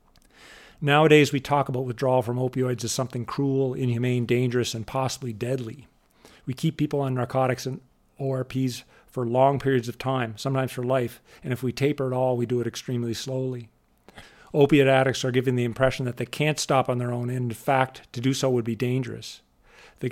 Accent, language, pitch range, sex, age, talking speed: American, English, 120-135 Hz, male, 40-59, 190 wpm